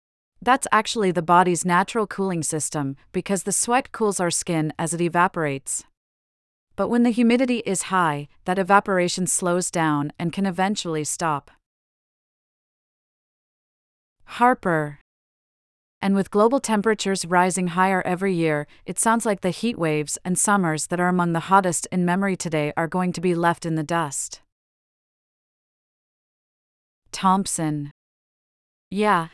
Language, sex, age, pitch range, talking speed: English, female, 40-59, 160-200 Hz, 135 wpm